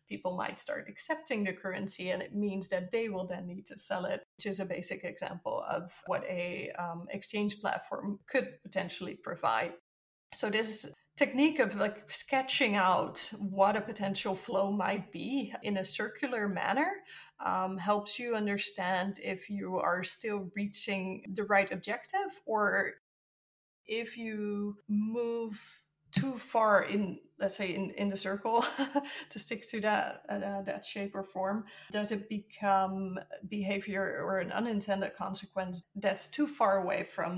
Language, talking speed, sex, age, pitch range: English, 150 wpm, female, 20-39, 190-220 Hz